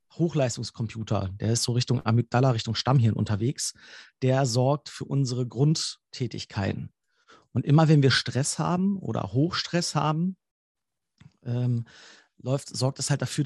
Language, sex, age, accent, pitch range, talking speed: German, male, 40-59, German, 125-155 Hz, 125 wpm